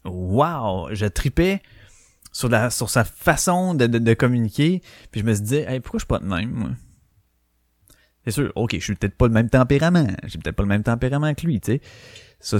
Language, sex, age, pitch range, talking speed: French, male, 30-49, 105-150 Hz, 225 wpm